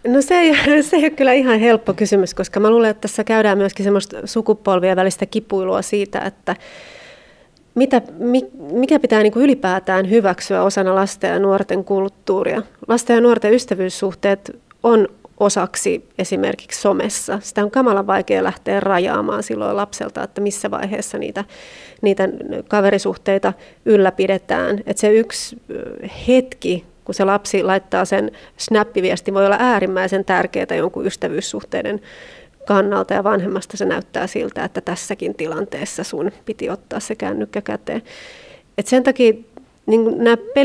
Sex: female